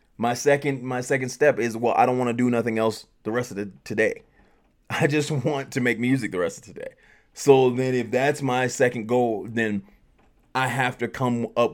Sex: male